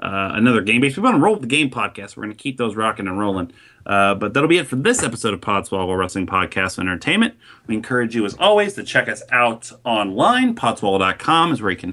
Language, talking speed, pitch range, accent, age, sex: English, 240 wpm, 105-145 Hz, American, 30-49, male